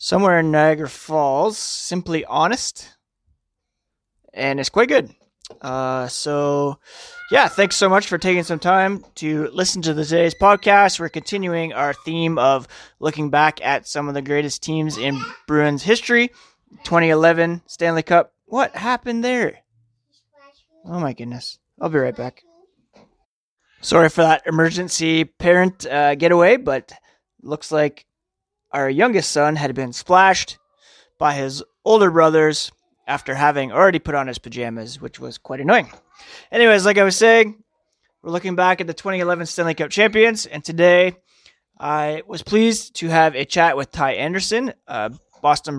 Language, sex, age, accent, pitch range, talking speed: English, male, 20-39, American, 145-180 Hz, 150 wpm